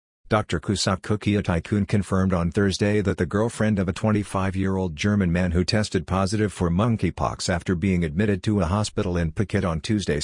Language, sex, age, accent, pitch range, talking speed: English, male, 50-69, American, 90-105 Hz, 190 wpm